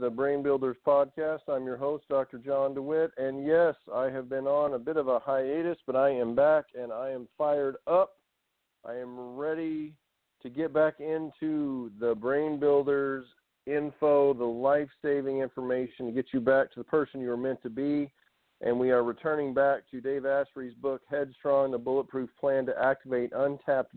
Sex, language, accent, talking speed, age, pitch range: male, English, American, 180 wpm, 50-69, 125-150 Hz